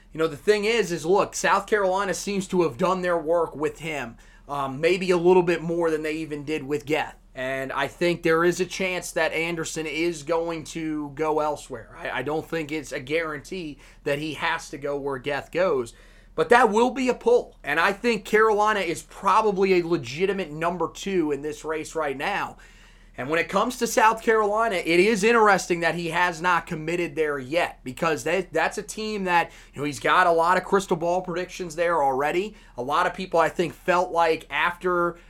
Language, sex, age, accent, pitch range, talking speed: English, male, 30-49, American, 155-190 Hz, 210 wpm